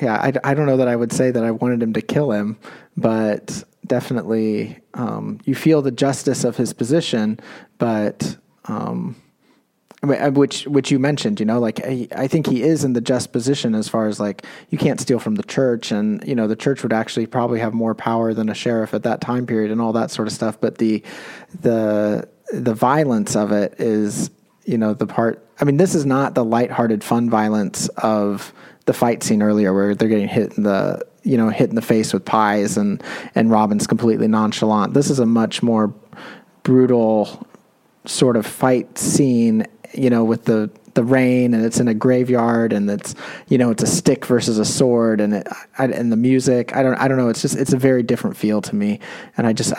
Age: 30-49